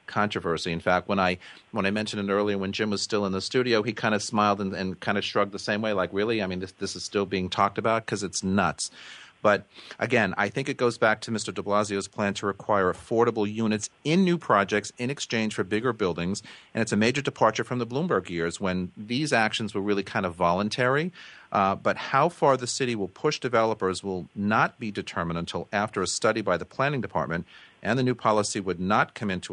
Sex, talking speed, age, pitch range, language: male, 230 wpm, 40-59, 95-115 Hz, English